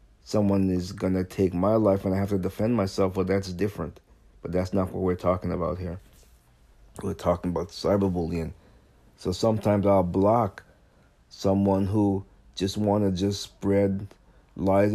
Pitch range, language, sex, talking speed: 90-100 Hz, English, male, 160 wpm